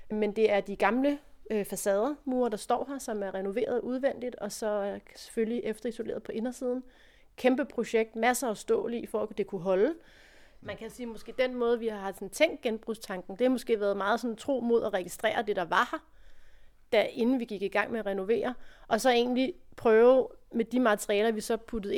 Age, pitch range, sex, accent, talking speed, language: 30-49, 210-240 Hz, female, native, 205 wpm, Danish